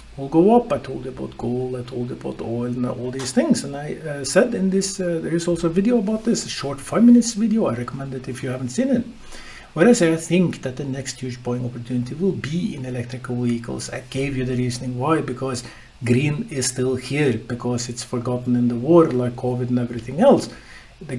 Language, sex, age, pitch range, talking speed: English, male, 50-69, 120-150 Hz, 230 wpm